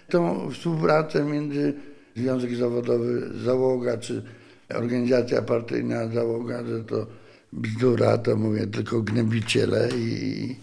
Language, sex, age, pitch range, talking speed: Polish, male, 60-79, 110-145 Hz, 100 wpm